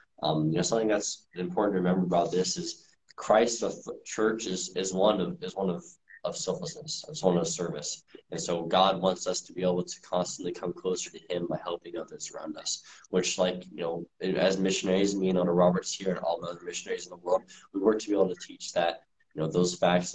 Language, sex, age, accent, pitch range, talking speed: English, male, 20-39, American, 90-110 Hz, 225 wpm